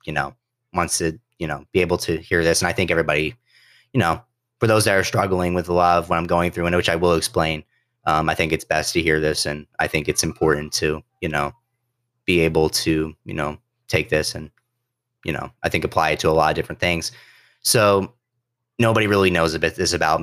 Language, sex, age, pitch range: English, male, 30-49, 80-100 Hz